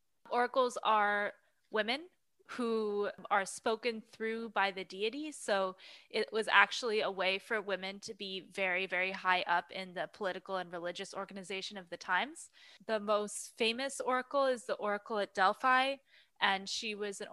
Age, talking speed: 20-39, 160 wpm